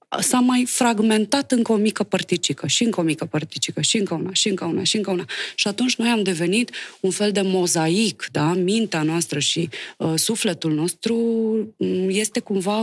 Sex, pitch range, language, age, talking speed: female, 170-225 Hz, Romanian, 20-39, 180 wpm